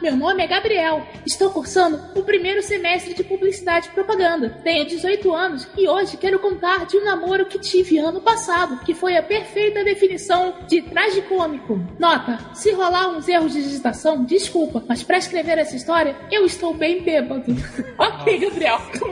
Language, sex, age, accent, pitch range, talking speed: Portuguese, female, 20-39, Brazilian, 315-380 Hz, 170 wpm